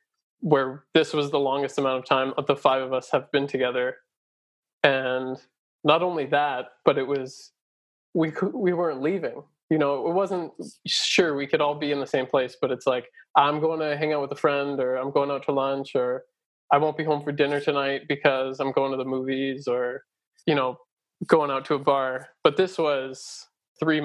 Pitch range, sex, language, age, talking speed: 135-155 Hz, male, English, 20-39, 205 wpm